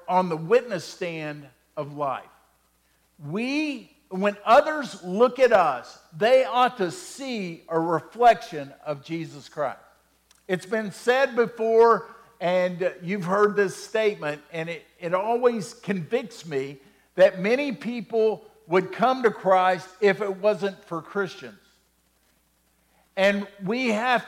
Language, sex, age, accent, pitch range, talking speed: English, male, 50-69, American, 165-225 Hz, 125 wpm